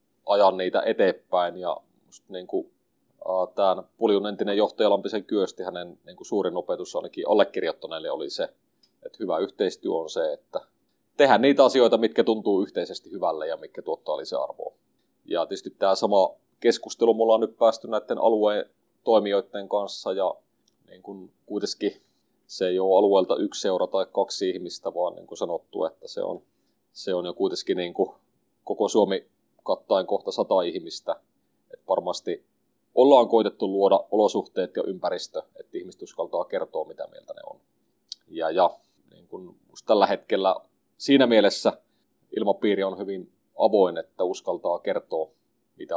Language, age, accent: Finnish, 30-49, native